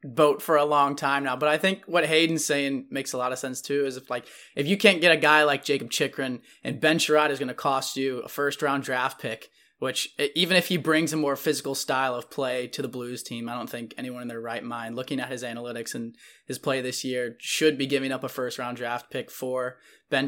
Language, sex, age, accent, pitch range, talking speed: English, male, 20-39, American, 125-155 Hz, 250 wpm